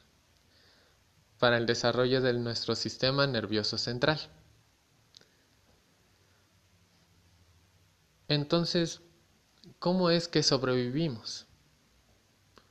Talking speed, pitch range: 60 wpm, 110-140 Hz